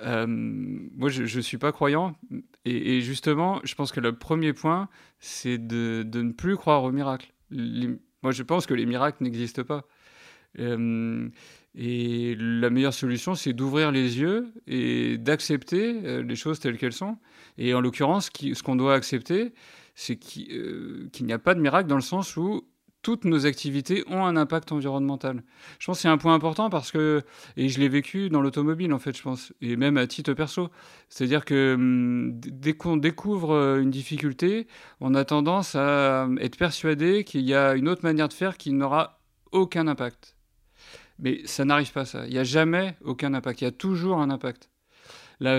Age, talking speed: 30-49, 190 wpm